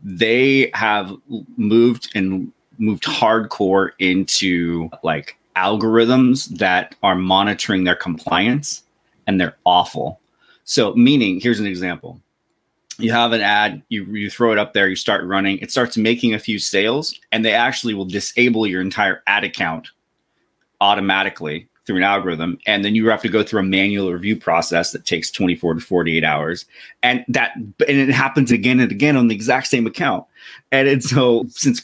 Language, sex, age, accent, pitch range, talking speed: English, male, 30-49, American, 95-120 Hz, 165 wpm